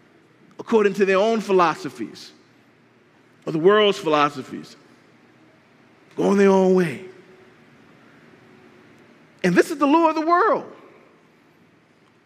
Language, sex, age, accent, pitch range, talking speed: English, male, 40-59, American, 245-335 Hz, 110 wpm